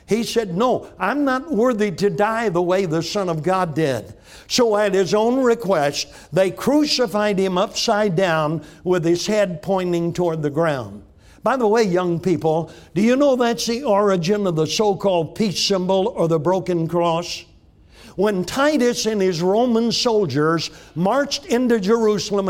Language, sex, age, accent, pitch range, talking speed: English, male, 60-79, American, 165-215 Hz, 165 wpm